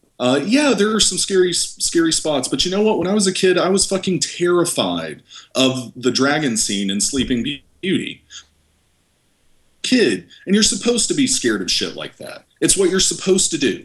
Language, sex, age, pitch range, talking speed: English, male, 40-59, 110-165 Hz, 195 wpm